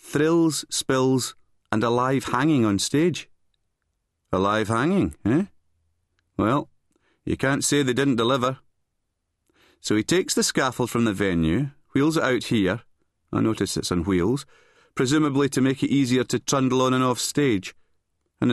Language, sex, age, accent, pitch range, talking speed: English, male, 40-59, British, 95-140 Hz, 155 wpm